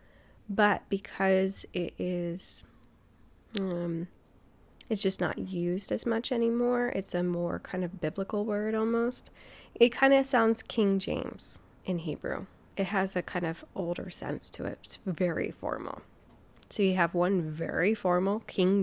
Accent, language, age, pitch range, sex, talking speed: American, English, 20-39, 175-225 Hz, female, 150 wpm